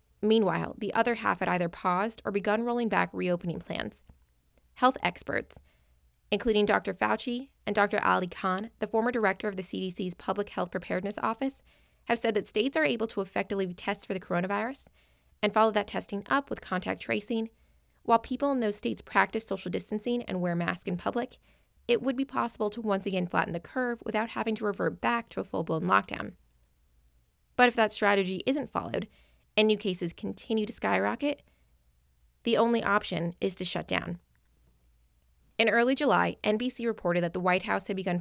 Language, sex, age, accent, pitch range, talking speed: English, female, 20-39, American, 170-225 Hz, 180 wpm